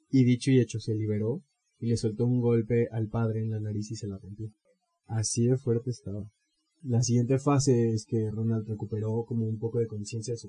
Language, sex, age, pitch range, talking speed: Spanish, male, 20-39, 105-125 Hz, 215 wpm